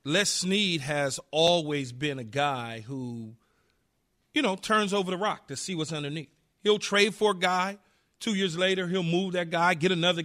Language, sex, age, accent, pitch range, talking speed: English, male, 40-59, American, 165-210 Hz, 185 wpm